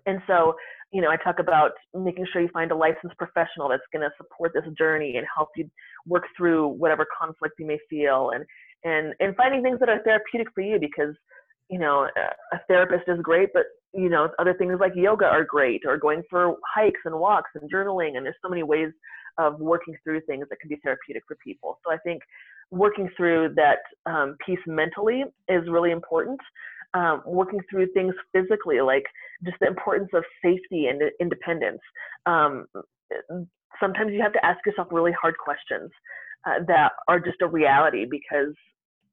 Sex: female